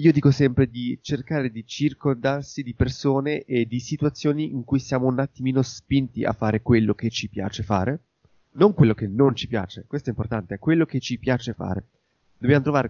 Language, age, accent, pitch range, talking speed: Italian, 20-39, native, 110-140 Hz, 195 wpm